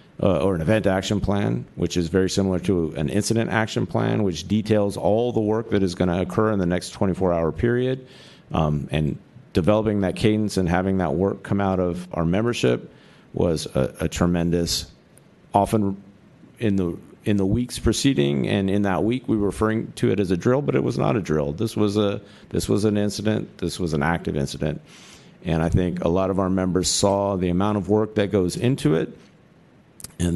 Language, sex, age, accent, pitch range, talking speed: English, male, 50-69, American, 85-105 Hz, 205 wpm